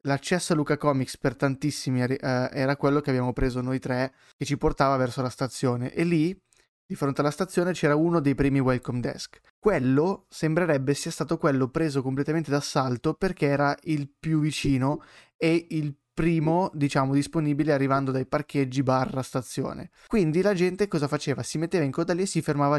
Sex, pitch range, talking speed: male, 130-155 Hz, 175 wpm